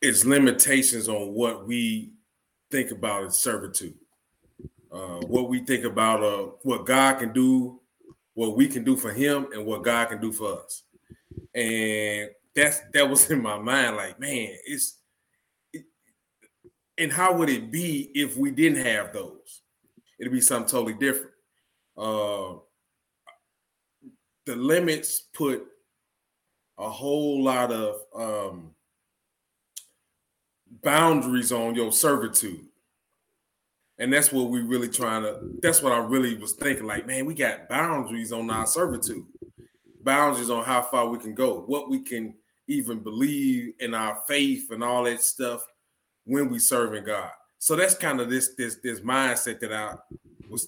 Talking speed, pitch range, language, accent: 150 wpm, 115-155 Hz, English, American